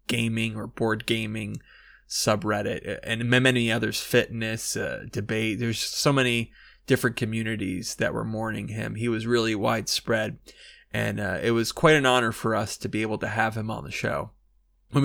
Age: 20-39